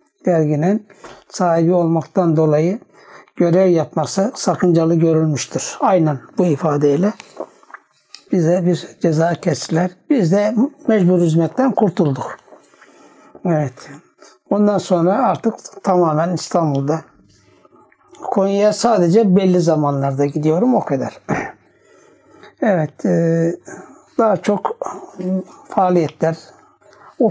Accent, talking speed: native, 85 wpm